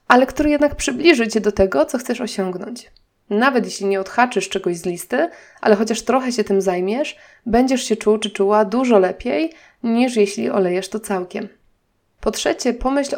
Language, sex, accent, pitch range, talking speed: Polish, female, native, 195-245 Hz, 175 wpm